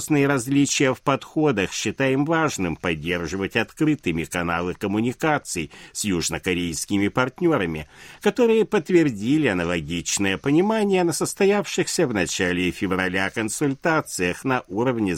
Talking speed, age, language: 95 wpm, 60-79, Russian